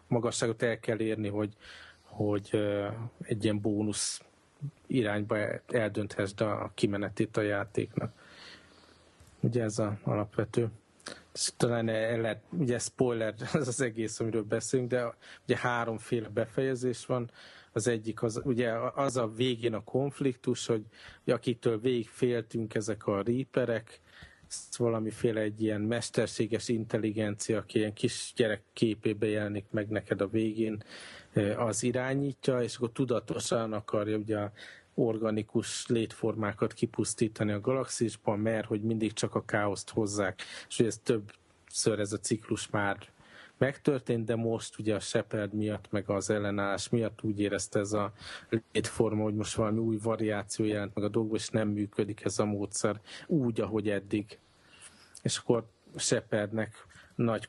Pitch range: 105-120 Hz